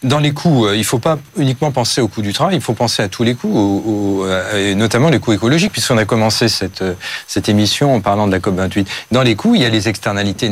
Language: French